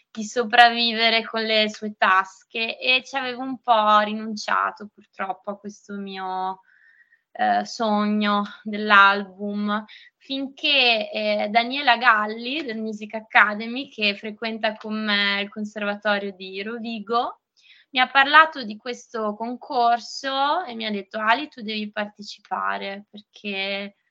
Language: Italian